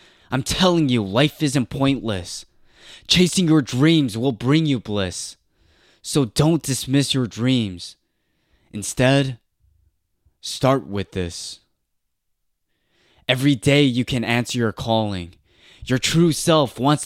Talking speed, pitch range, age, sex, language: 115 wpm, 115-150 Hz, 20-39, male, English